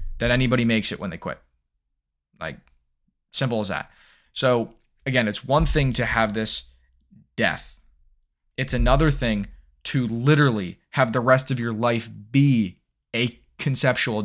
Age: 20-39